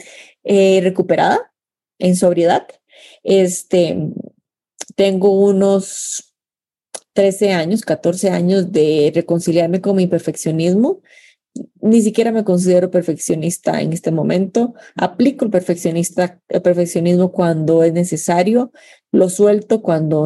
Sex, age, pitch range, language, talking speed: female, 30-49, 175-205 Hz, Spanish, 100 wpm